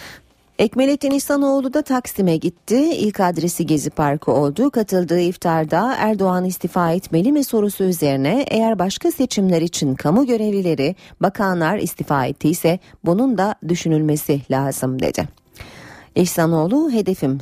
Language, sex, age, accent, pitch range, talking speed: Turkish, female, 40-59, native, 155-225 Hz, 115 wpm